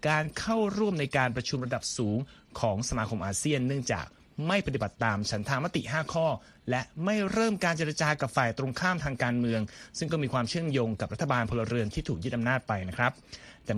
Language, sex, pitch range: Thai, male, 115-155 Hz